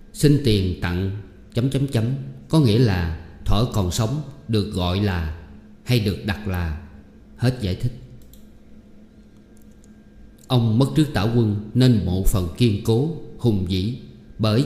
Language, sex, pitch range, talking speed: Vietnamese, male, 100-130 Hz, 130 wpm